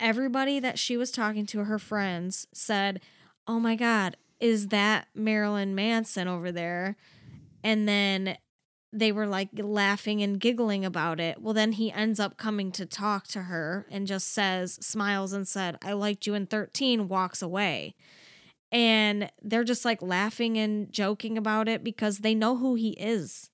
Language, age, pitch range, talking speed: English, 20-39, 195-225 Hz, 170 wpm